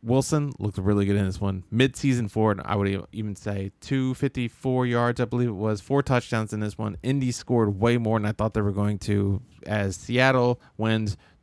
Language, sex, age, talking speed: English, male, 20-39, 210 wpm